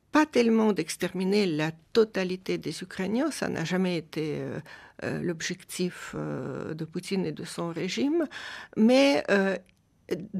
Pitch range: 165-220 Hz